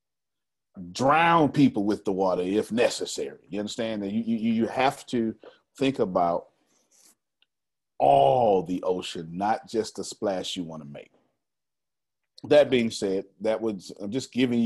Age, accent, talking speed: 40-59, American, 145 wpm